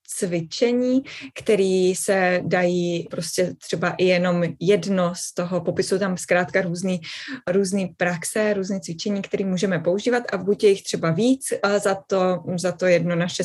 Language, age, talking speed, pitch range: Czech, 20-39, 150 wpm, 175-205 Hz